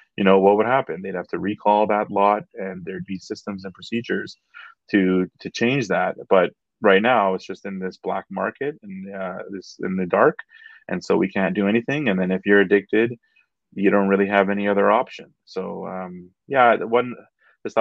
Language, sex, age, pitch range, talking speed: English, male, 30-49, 95-110 Hz, 200 wpm